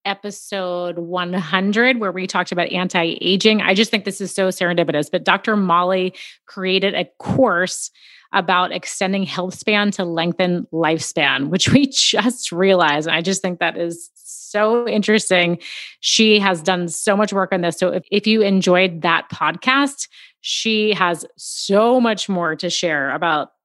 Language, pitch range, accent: English, 175-210 Hz, American